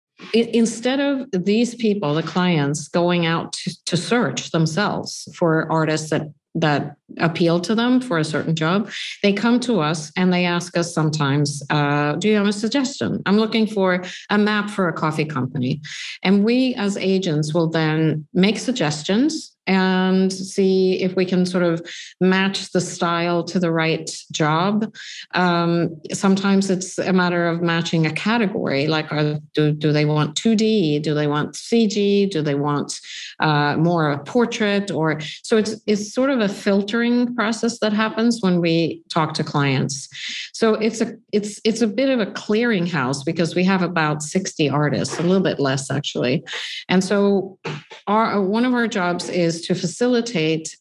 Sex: female